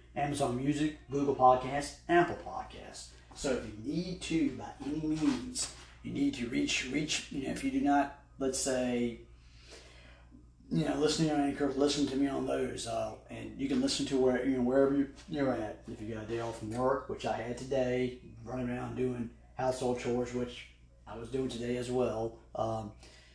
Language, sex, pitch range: English, male, 110-130 Hz